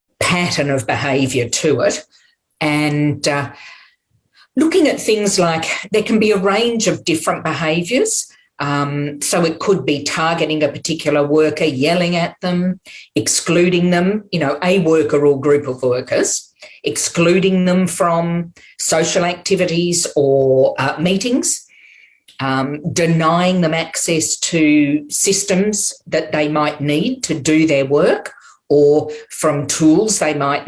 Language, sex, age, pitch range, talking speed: English, female, 40-59, 145-175 Hz, 135 wpm